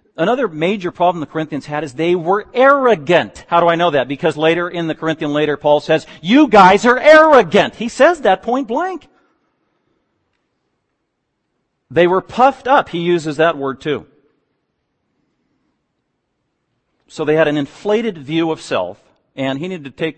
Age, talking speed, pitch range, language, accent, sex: 40-59, 160 wpm, 135-180 Hz, English, American, male